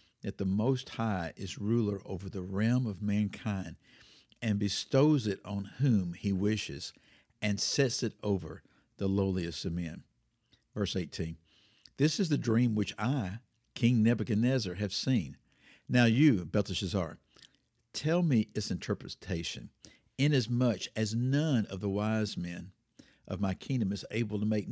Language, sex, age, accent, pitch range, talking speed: English, male, 50-69, American, 100-125 Hz, 145 wpm